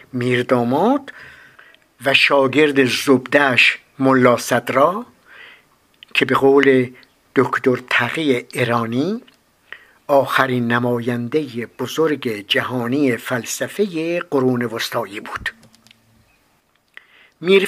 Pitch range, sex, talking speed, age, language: 125-165 Hz, male, 70 wpm, 60-79, English